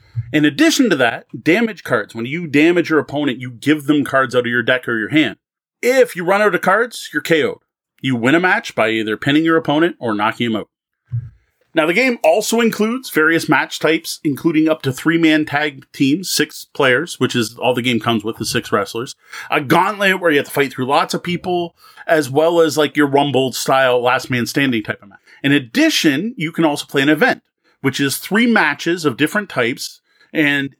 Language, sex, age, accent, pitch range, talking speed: English, male, 30-49, American, 135-170 Hz, 205 wpm